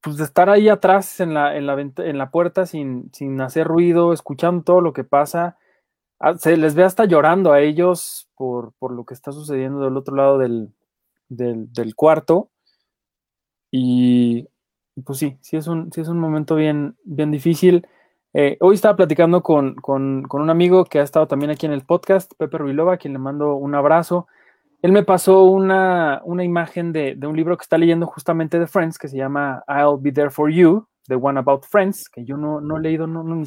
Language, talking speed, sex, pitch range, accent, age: Spanish, 195 wpm, male, 140-180 Hz, Mexican, 20-39